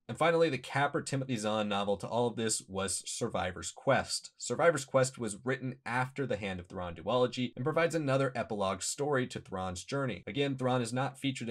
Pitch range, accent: 100-130 Hz, American